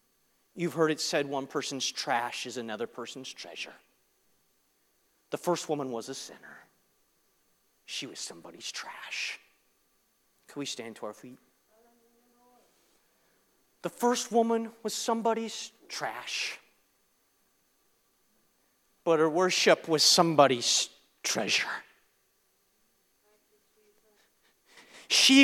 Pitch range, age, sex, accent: 165-230 Hz, 30-49, male, American